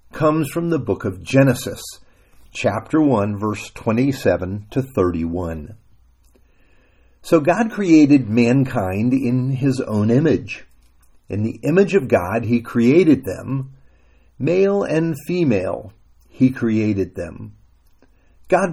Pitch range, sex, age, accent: 95-140 Hz, male, 50-69, American